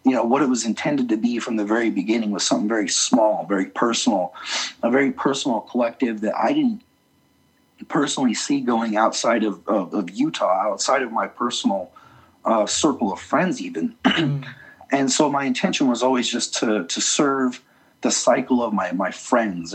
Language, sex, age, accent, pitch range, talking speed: English, male, 30-49, American, 110-170 Hz, 175 wpm